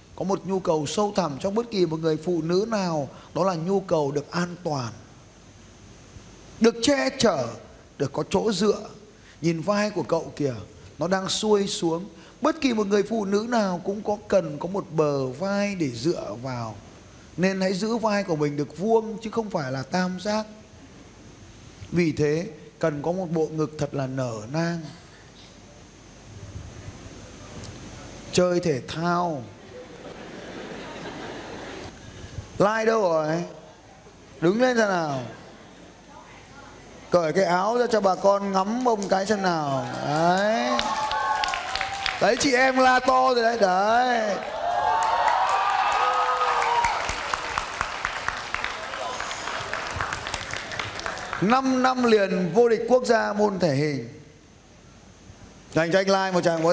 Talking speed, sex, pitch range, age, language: 135 wpm, male, 145-215 Hz, 20-39, Vietnamese